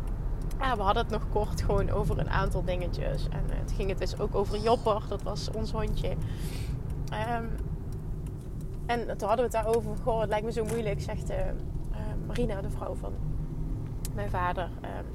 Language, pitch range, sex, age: Dutch, 115-185 Hz, female, 20-39